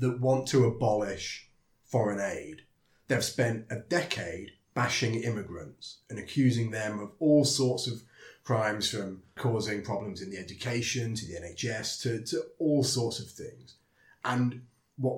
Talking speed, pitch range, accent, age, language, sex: 145 wpm, 105-135 Hz, British, 30-49, English, male